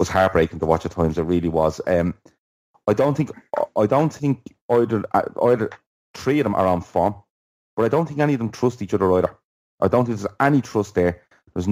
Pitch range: 90-105 Hz